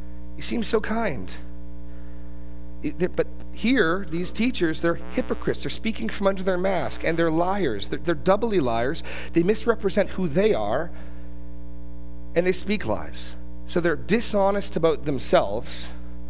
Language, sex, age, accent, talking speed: English, male, 40-59, American, 140 wpm